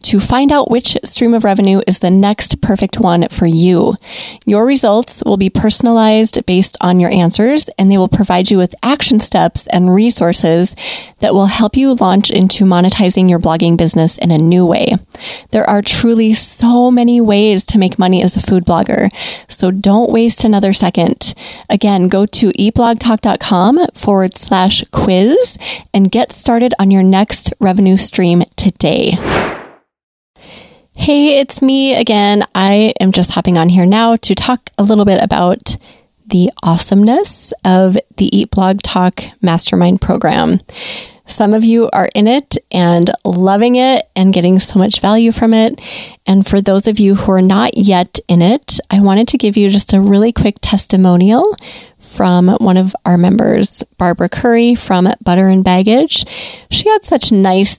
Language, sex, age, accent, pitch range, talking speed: English, female, 20-39, American, 185-230 Hz, 165 wpm